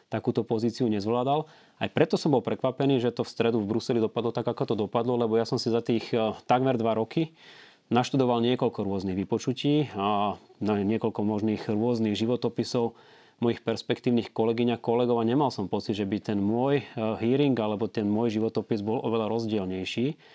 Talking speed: 170 wpm